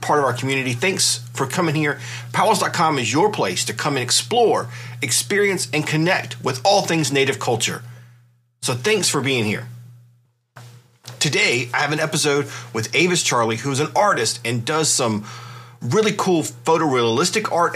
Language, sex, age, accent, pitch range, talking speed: English, male, 40-59, American, 120-165 Hz, 160 wpm